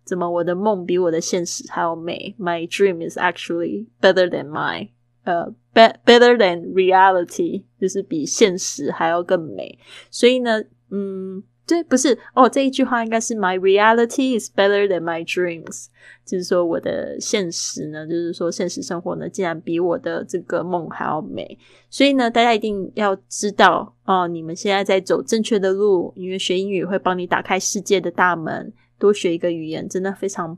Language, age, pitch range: Chinese, 20-39, 175-205 Hz